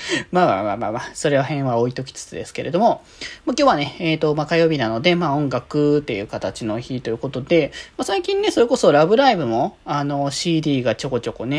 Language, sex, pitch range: Japanese, male, 125-170 Hz